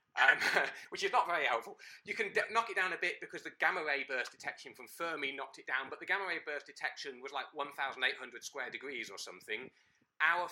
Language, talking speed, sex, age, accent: English, 225 wpm, male, 30-49, British